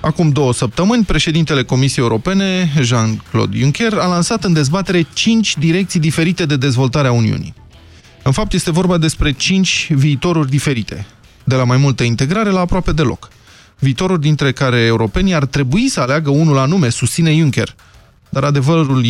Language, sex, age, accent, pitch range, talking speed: Romanian, male, 20-39, native, 120-160 Hz, 155 wpm